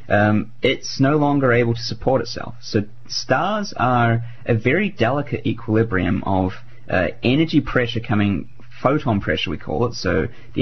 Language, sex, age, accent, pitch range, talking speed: English, male, 20-39, Australian, 100-120 Hz, 155 wpm